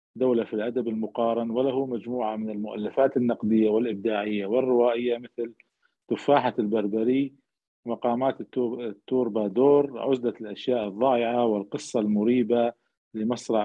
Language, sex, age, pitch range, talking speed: Arabic, male, 40-59, 110-130 Hz, 95 wpm